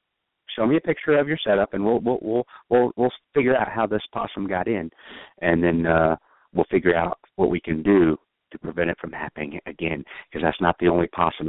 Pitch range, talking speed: 85-120 Hz, 220 wpm